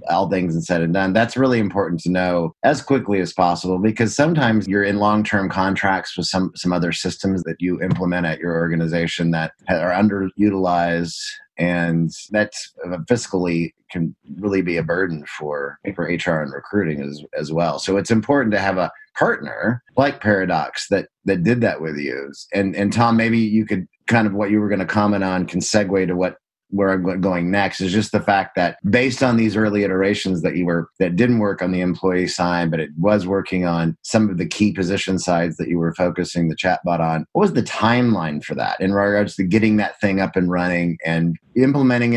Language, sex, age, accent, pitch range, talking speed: English, male, 30-49, American, 85-105 Hz, 205 wpm